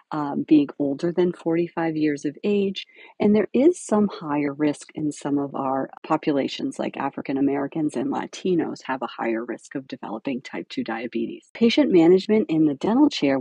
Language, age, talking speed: English, 40-59, 170 wpm